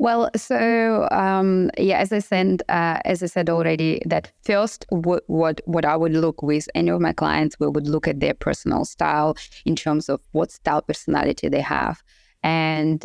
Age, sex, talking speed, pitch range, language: 20-39, female, 190 wpm, 150-175 Hz, English